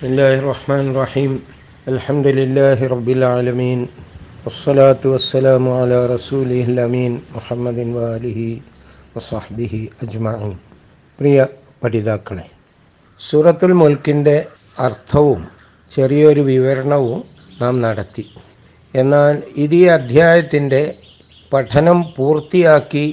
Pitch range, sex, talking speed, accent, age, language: 125-150 Hz, male, 70 wpm, native, 60-79, Malayalam